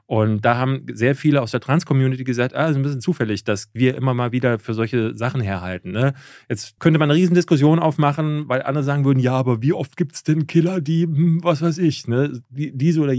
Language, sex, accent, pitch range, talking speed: German, male, German, 105-140 Hz, 225 wpm